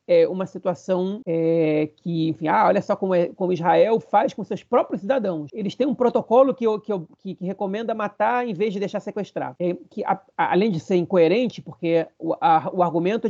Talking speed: 215 wpm